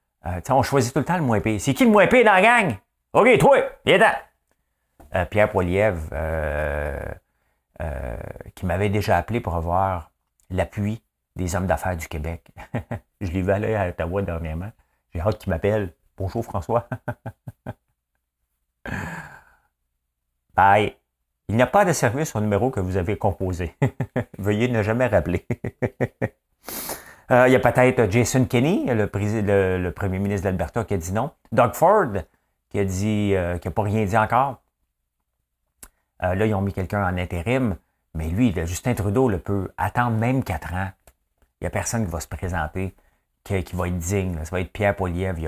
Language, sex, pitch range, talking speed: French, male, 80-110 Hz, 175 wpm